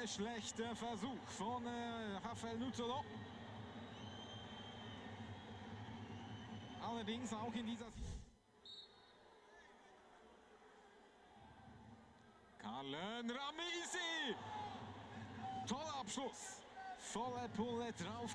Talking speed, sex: 55 wpm, male